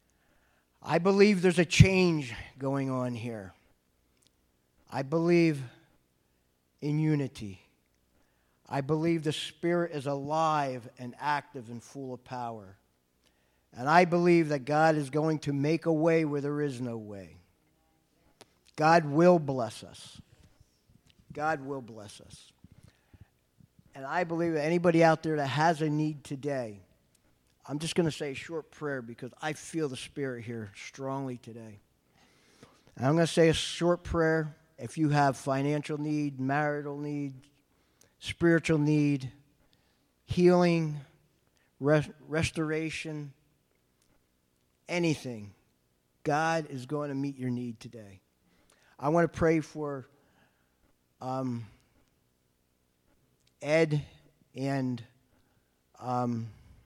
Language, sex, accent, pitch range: English, male, American, 110-155 Hz